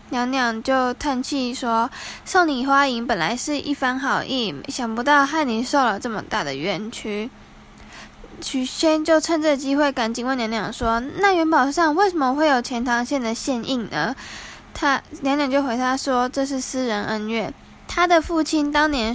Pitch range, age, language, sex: 240-290 Hz, 10-29, Chinese, female